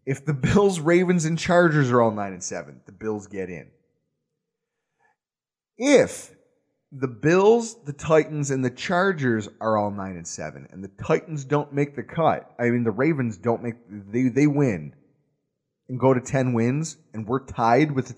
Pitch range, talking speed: 120-170 Hz, 180 wpm